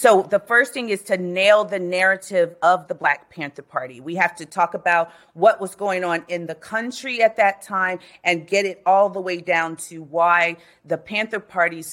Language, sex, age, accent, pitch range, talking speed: English, female, 40-59, American, 165-210 Hz, 205 wpm